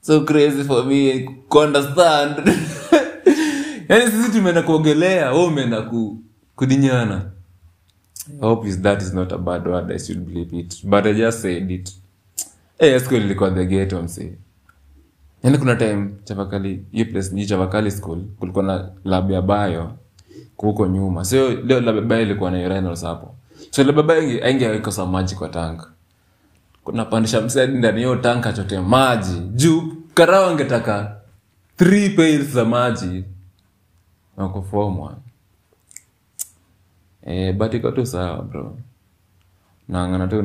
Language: Swahili